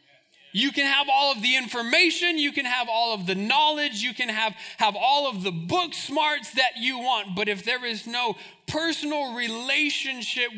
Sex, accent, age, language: male, American, 30-49, English